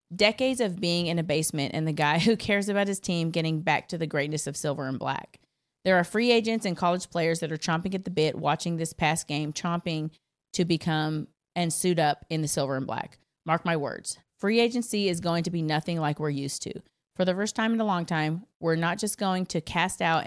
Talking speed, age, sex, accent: 235 wpm, 30-49, female, American